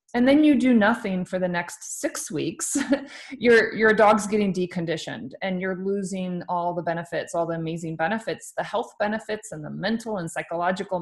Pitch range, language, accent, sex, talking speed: 170-210 Hz, English, American, female, 180 wpm